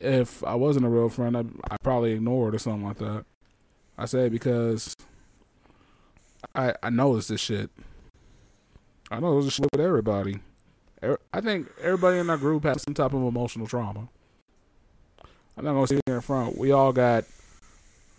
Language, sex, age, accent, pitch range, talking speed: English, male, 20-39, American, 110-130 Hz, 170 wpm